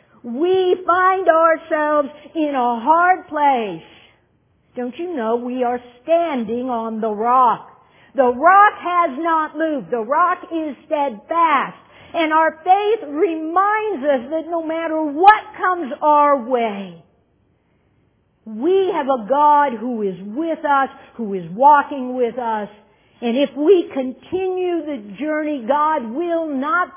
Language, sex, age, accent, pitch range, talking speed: English, female, 50-69, American, 235-325 Hz, 130 wpm